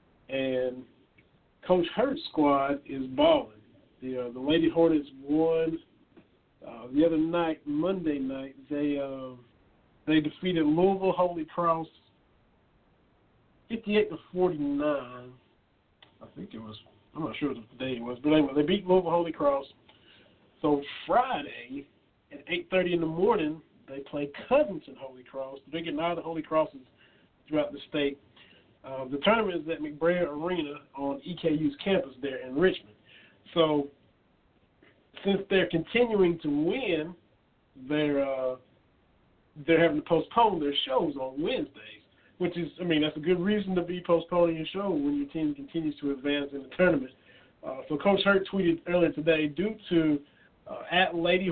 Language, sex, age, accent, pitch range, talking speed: English, male, 50-69, American, 140-175 Hz, 155 wpm